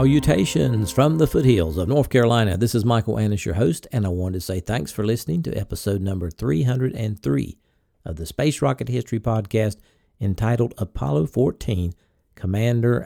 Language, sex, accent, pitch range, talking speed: English, male, American, 95-120 Hz, 160 wpm